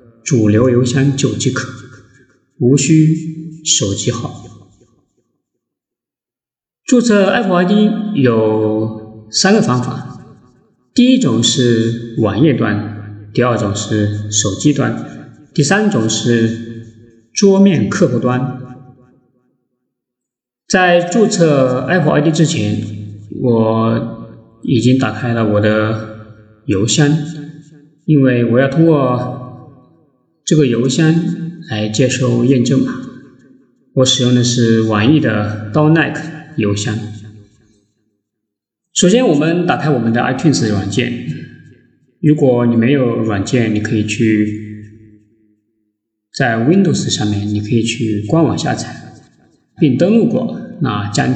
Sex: male